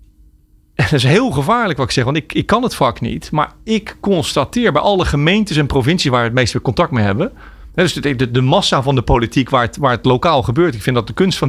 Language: Dutch